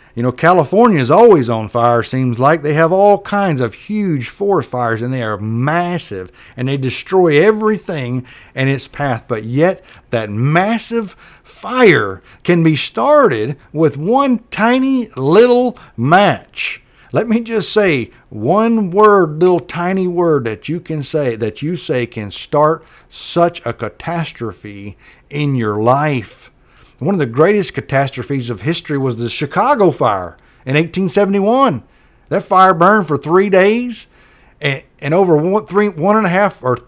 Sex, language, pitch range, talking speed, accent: male, English, 125-190 Hz, 155 wpm, American